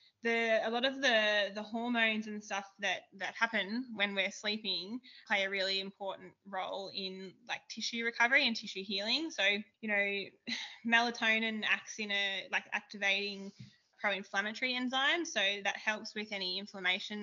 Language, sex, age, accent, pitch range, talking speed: English, female, 20-39, Australian, 190-215 Hz, 150 wpm